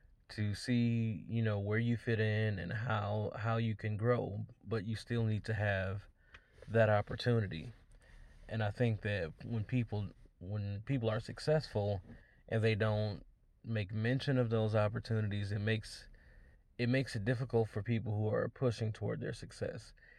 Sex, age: male, 20-39